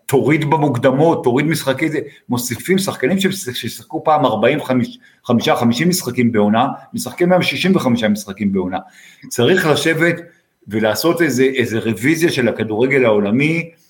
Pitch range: 120-175 Hz